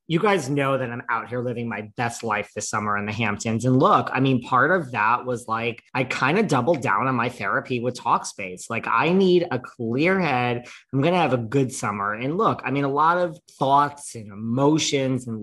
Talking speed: 230 wpm